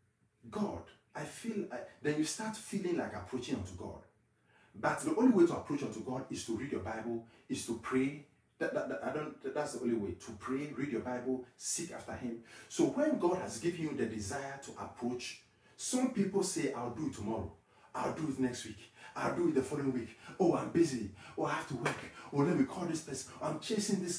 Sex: male